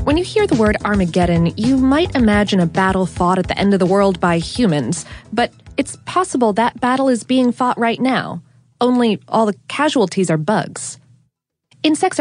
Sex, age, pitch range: female, 20-39, 175-245 Hz